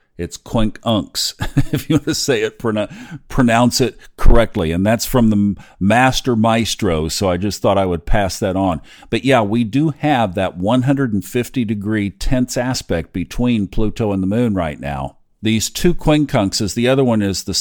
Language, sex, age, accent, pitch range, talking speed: English, male, 50-69, American, 95-125 Hz, 175 wpm